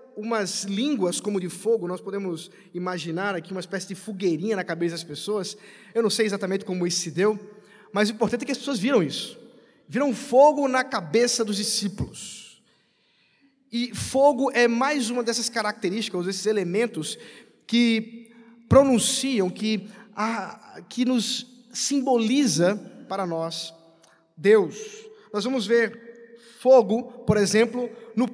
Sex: male